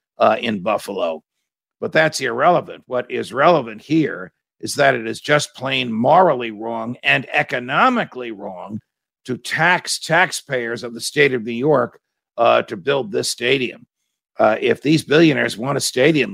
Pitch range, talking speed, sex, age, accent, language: 130-175 Hz, 155 wpm, male, 50-69, American, English